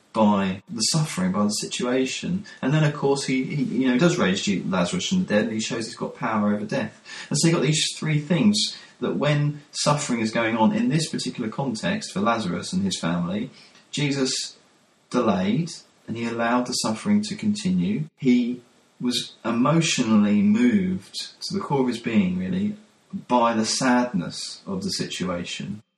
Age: 30-49